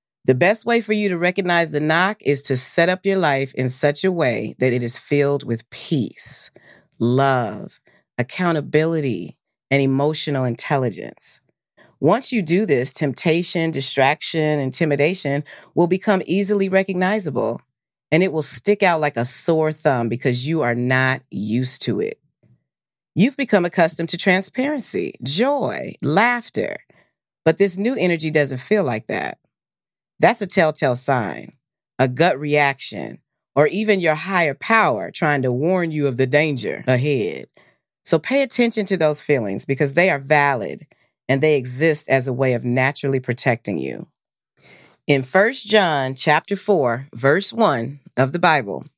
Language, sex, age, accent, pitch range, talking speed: English, female, 40-59, American, 135-185 Hz, 150 wpm